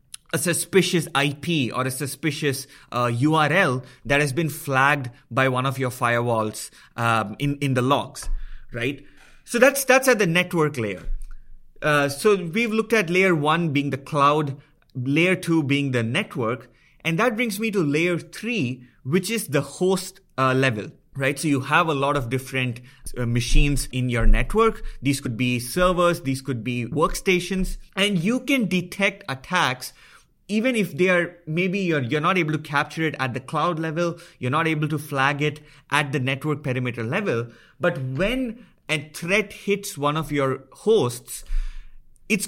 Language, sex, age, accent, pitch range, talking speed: English, male, 30-49, Indian, 130-180 Hz, 170 wpm